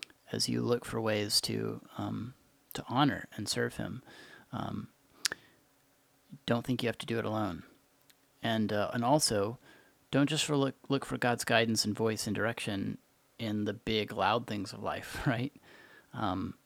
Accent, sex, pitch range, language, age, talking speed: American, male, 110-135 Hz, English, 30-49, 165 wpm